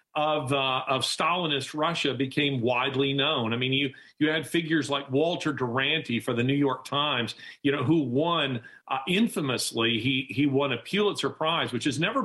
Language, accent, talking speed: English, American, 180 wpm